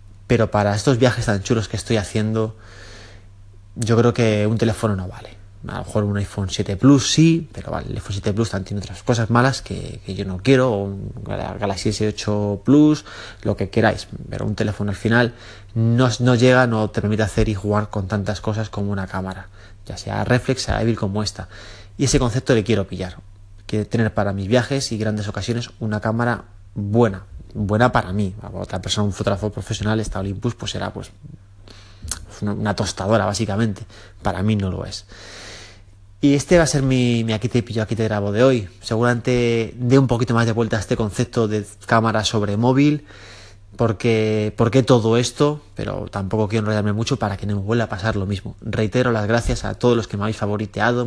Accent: Spanish